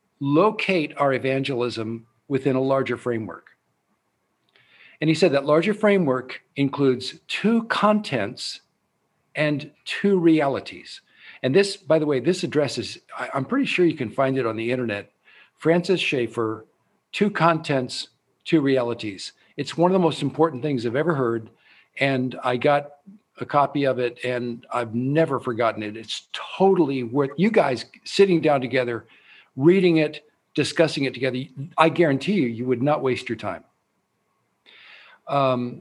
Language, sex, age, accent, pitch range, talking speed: English, male, 50-69, American, 125-165 Hz, 145 wpm